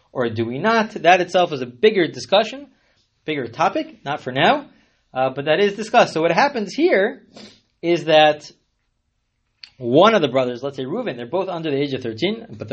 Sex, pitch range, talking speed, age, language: male, 125-180 Hz, 195 wpm, 30-49, English